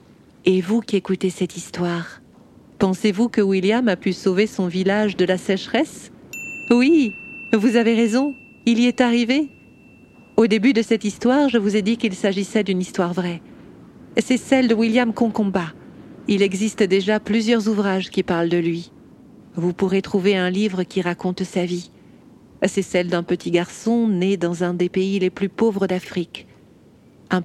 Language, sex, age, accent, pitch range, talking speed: French, female, 50-69, French, 185-235 Hz, 170 wpm